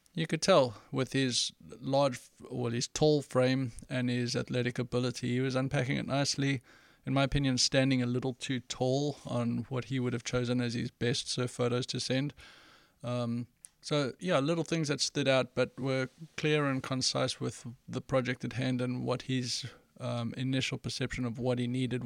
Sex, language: male, English